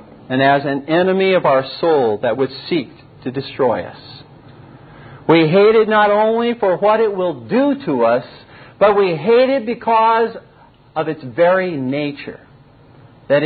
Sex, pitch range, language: male, 130-165 Hz, English